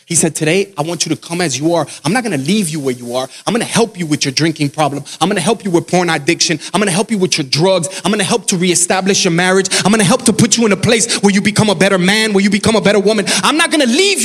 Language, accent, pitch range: English, American, 195-265 Hz